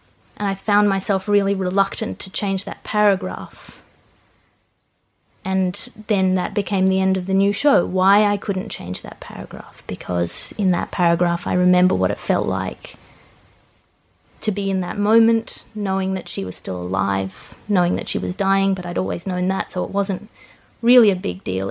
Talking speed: 175 wpm